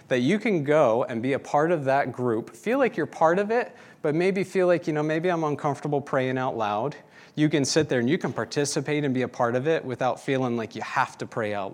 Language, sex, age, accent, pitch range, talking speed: English, male, 40-59, American, 110-150 Hz, 260 wpm